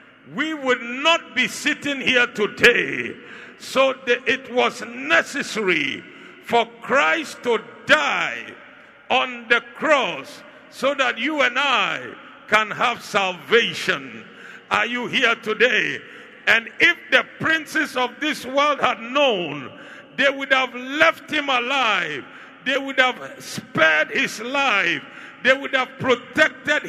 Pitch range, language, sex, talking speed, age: 235-295 Hz, English, male, 125 wpm, 60-79